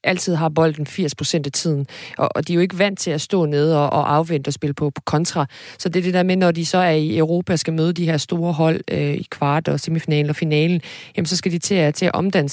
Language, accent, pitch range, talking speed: Danish, native, 150-185 Hz, 255 wpm